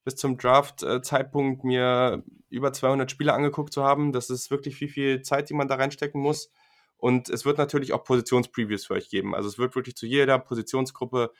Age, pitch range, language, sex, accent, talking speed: 20-39, 115-130 Hz, German, male, German, 195 wpm